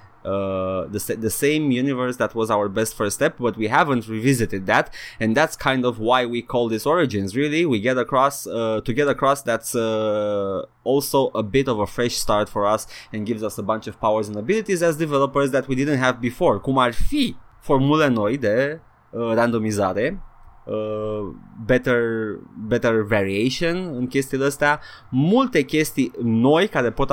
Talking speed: 175 wpm